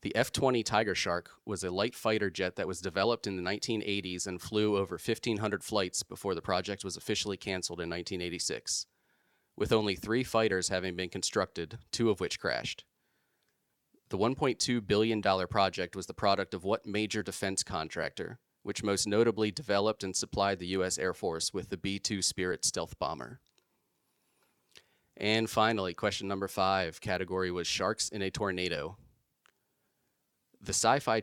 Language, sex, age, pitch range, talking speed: English, male, 30-49, 95-110 Hz, 155 wpm